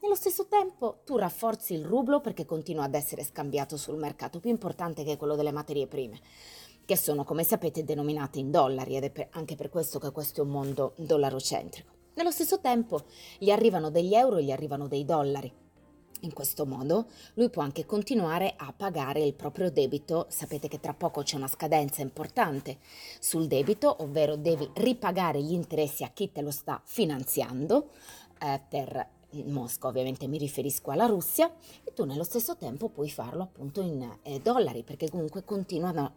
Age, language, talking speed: 30-49, Italian, 180 wpm